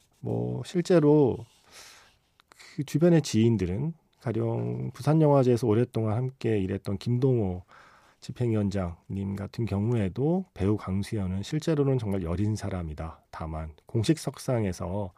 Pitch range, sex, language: 95-140 Hz, male, Korean